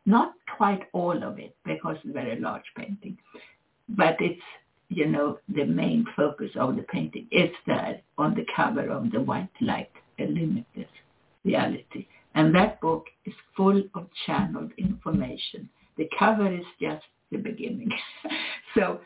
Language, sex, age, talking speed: English, female, 60-79, 150 wpm